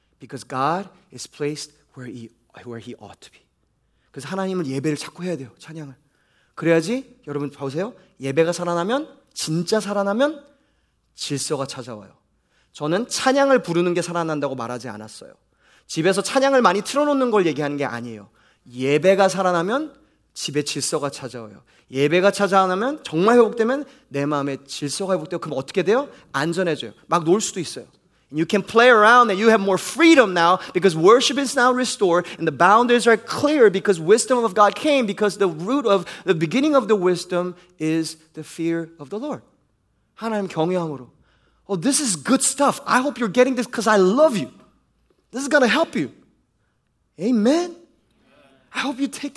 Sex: male